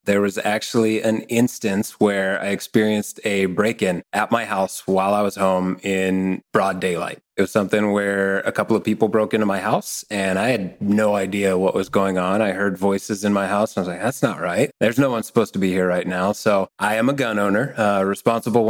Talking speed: 230 wpm